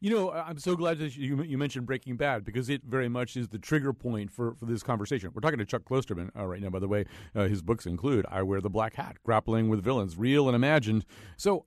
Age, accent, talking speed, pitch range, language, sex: 40-59, American, 255 wpm, 110-140 Hz, English, male